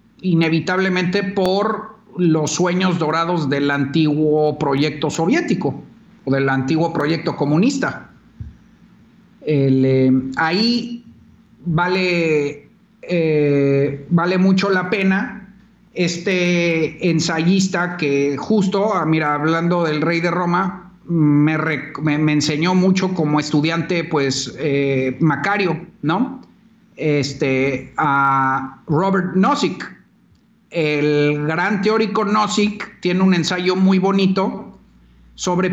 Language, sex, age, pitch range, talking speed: Spanish, male, 50-69, 150-190 Hz, 100 wpm